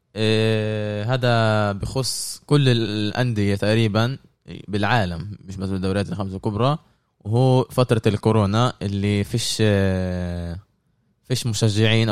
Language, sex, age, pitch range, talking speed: Arabic, male, 20-39, 100-120 Hz, 95 wpm